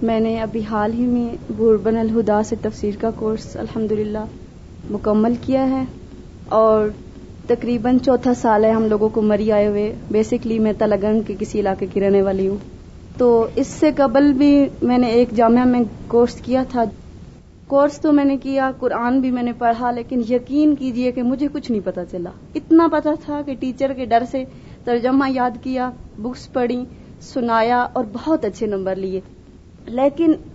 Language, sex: Urdu, female